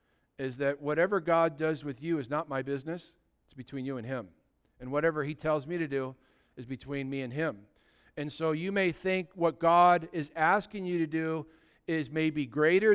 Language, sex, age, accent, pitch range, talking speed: English, male, 50-69, American, 155-200 Hz, 200 wpm